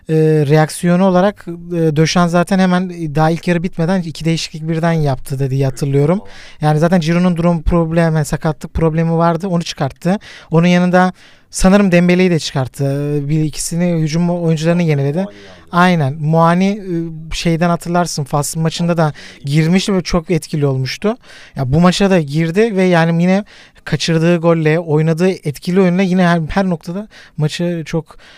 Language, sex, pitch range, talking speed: Turkish, male, 150-175 Hz, 145 wpm